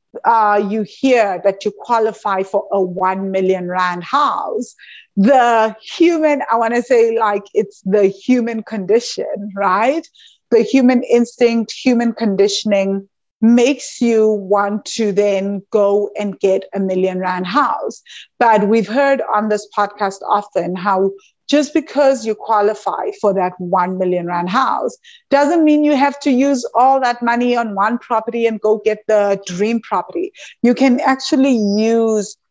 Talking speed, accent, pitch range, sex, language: 150 wpm, Indian, 195-235 Hz, female, English